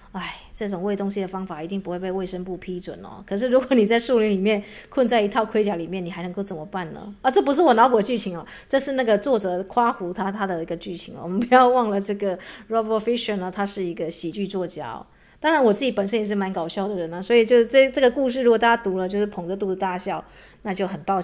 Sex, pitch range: female, 180-230 Hz